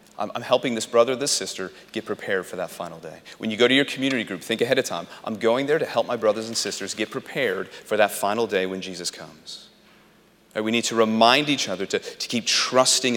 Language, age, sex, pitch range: English, 30-49, male, 110-150 Hz